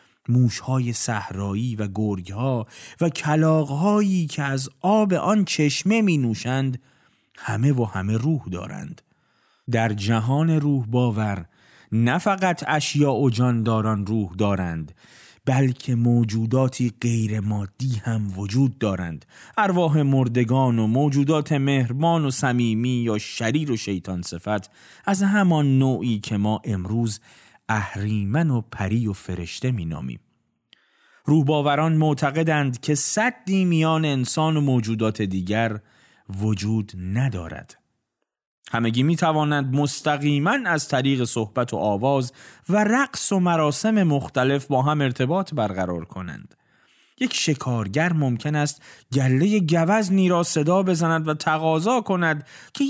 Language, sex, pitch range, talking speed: Persian, male, 110-155 Hz, 115 wpm